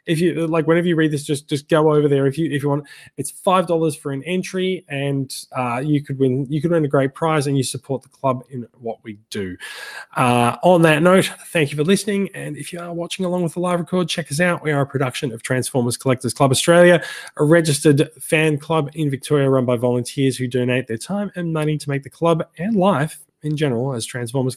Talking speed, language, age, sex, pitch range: 240 wpm, English, 20-39, male, 125-155 Hz